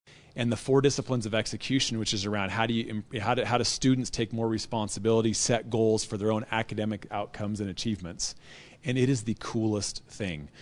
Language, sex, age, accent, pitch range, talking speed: English, male, 30-49, American, 105-130 Hz, 200 wpm